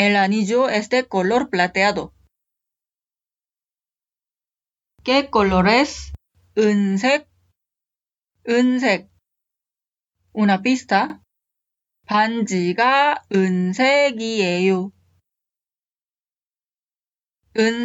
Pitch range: 185-235 Hz